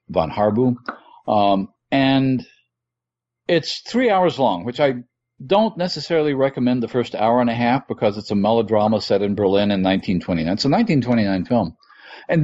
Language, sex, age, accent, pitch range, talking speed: English, male, 50-69, American, 115-160 Hz, 160 wpm